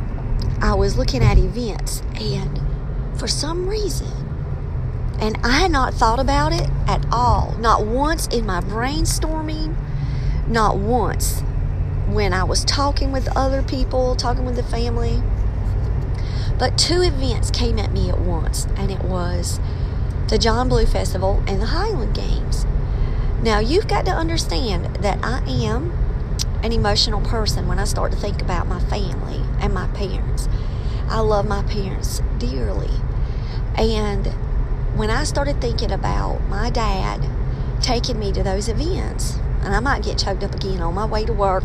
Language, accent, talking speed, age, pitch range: English, American, 155 wpm, 40-59, 90-115 Hz